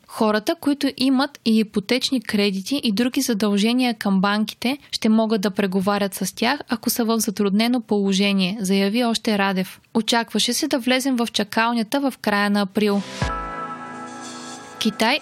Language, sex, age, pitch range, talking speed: Bulgarian, female, 20-39, 210-255 Hz, 140 wpm